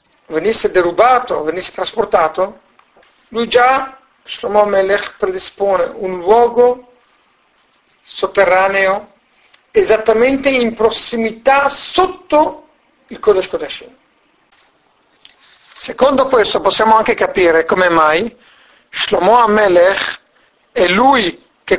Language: Italian